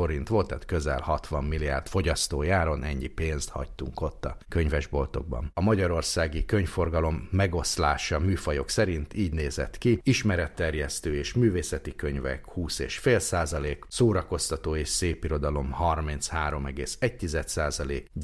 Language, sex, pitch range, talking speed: Hungarian, male, 75-95 Hz, 100 wpm